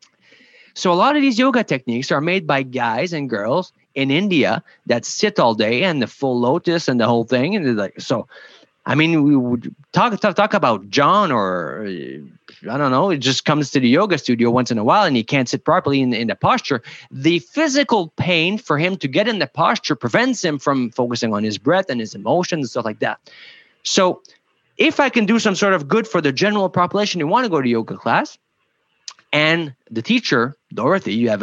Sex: male